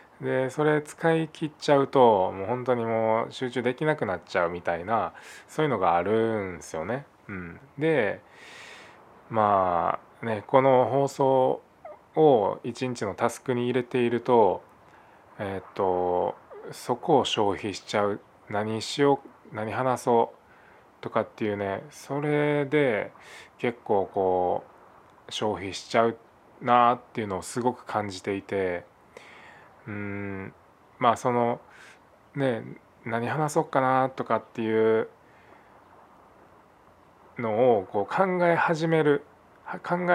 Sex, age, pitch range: male, 20-39, 110-140 Hz